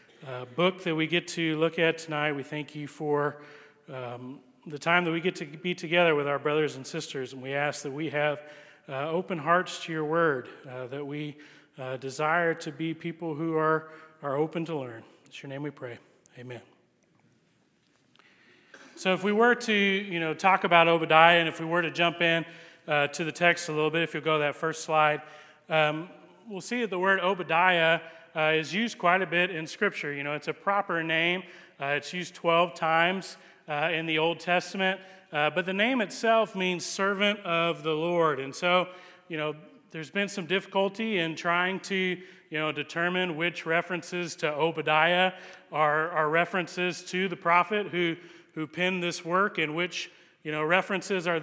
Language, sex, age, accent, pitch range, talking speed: English, male, 40-59, American, 155-180 Hz, 195 wpm